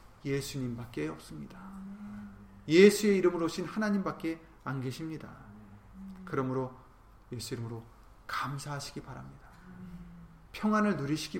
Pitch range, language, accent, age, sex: 120-190 Hz, Korean, native, 30-49, male